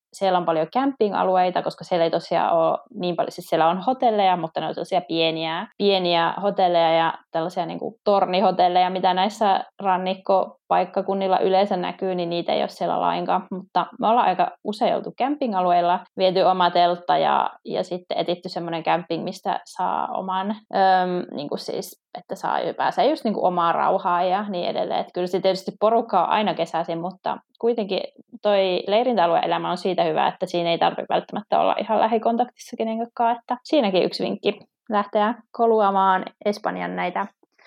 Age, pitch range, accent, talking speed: 20-39, 180-215 Hz, native, 160 wpm